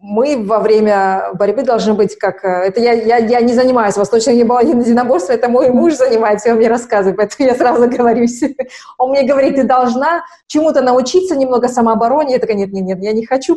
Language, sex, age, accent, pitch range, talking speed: Russian, female, 20-39, native, 200-255 Hz, 205 wpm